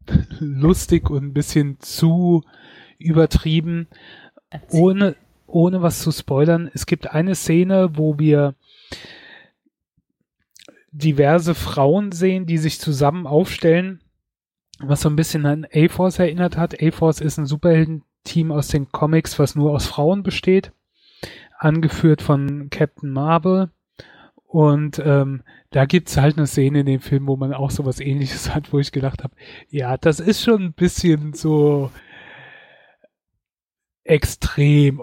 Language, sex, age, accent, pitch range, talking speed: German, male, 30-49, German, 140-165 Hz, 135 wpm